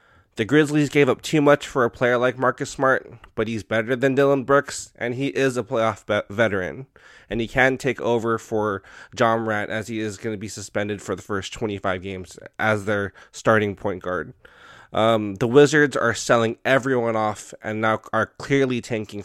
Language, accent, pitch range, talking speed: English, American, 110-135 Hz, 195 wpm